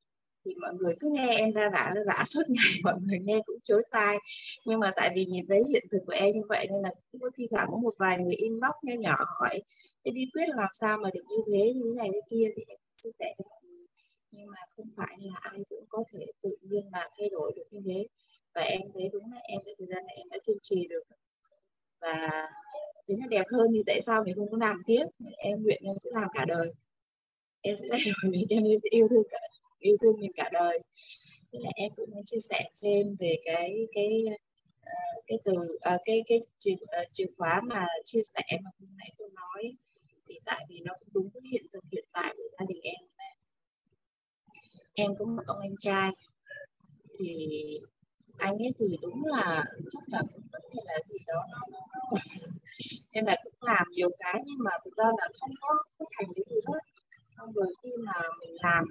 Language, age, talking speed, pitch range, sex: Vietnamese, 20-39, 220 wpm, 190-255 Hz, female